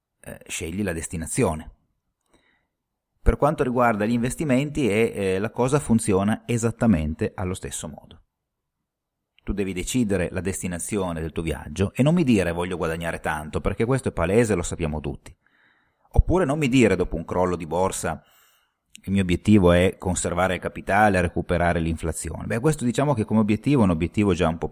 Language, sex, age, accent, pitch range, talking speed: Italian, male, 30-49, native, 85-110 Hz, 170 wpm